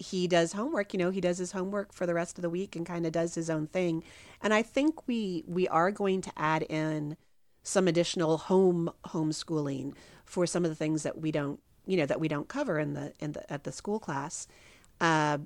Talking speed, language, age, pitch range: 230 wpm, English, 40-59, 150-185 Hz